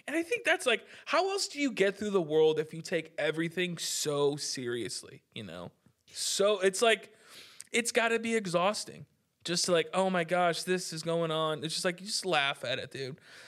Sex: male